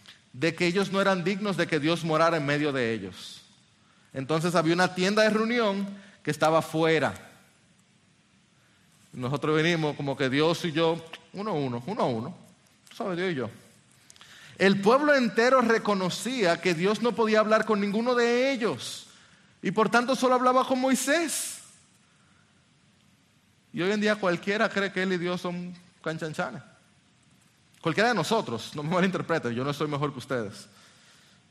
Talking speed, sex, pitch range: 150 wpm, male, 165-220 Hz